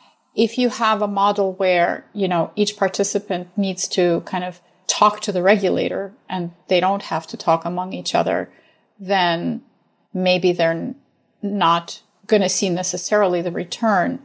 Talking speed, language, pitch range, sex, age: 155 wpm, English, 175-205 Hz, female, 40-59